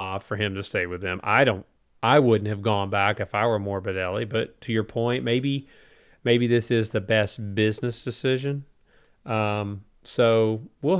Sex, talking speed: male, 175 wpm